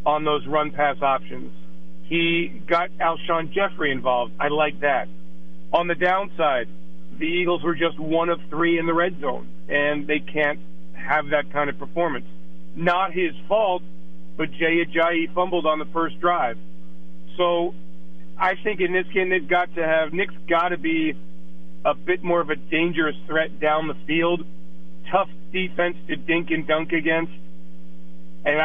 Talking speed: 165 wpm